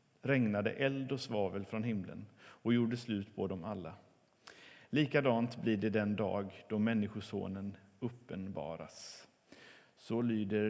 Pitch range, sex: 105-130 Hz, male